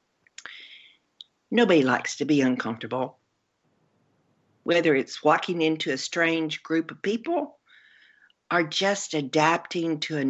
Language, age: English, 50-69